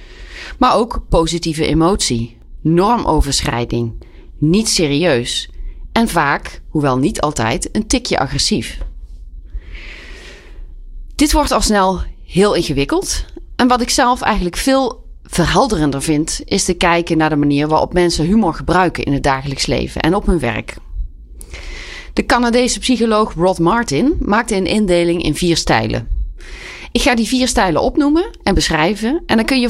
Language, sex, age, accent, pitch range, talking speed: Dutch, female, 30-49, Dutch, 135-215 Hz, 140 wpm